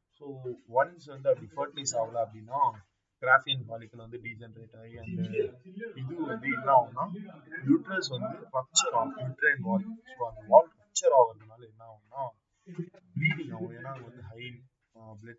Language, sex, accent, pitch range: Tamil, male, native, 110-165 Hz